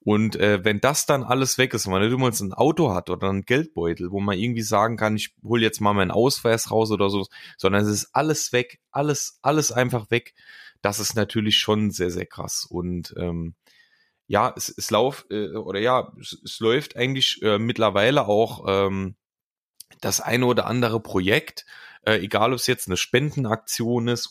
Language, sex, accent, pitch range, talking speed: German, male, German, 100-120 Hz, 190 wpm